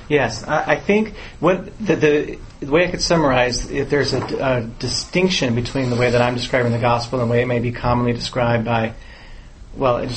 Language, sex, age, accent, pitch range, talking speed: English, male, 30-49, American, 115-135 Hz, 210 wpm